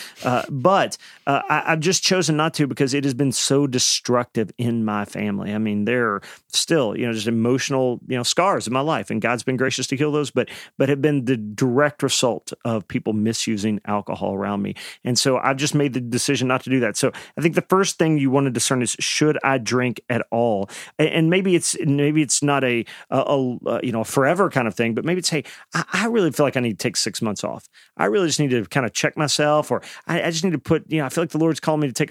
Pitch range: 120-150 Hz